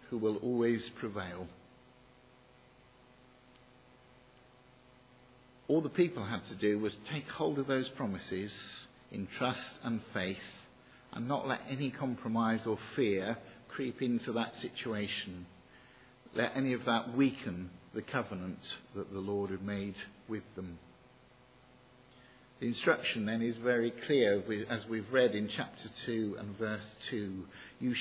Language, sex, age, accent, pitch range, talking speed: English, male, 50-69, British, 105-125 Hz, 130 wpm